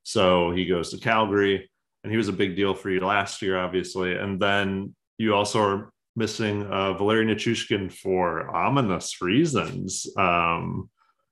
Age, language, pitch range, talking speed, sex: 30-49, English, 85-105 Hz, 155 wpm, male